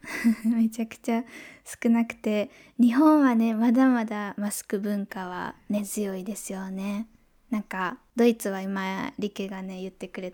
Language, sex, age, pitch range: Japanese, female, 20-39, 195-250 Hz